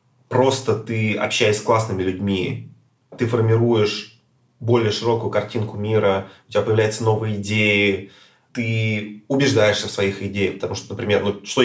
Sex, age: male, 20-39